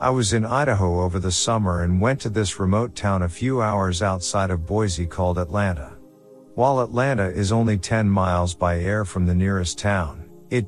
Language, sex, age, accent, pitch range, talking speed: English, male, 50-69, American, 90-115 Hz, 190 wpm